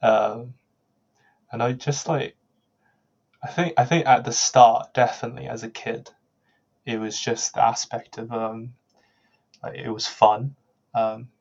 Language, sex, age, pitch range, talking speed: English, male, 10-29, 110-120 Hz, 155 wpm